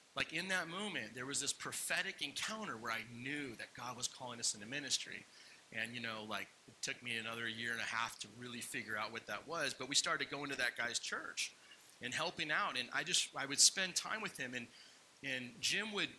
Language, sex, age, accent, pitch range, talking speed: English, male, 30-49, American, 125-180 Hz, 230 wpm